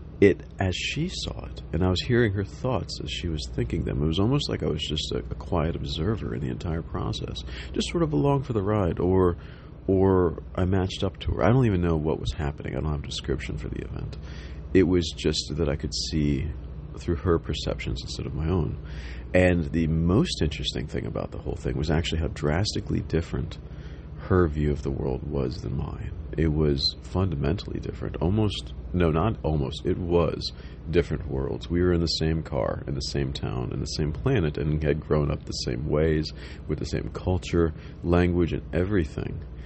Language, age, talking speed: English, 40-59, 205 wpm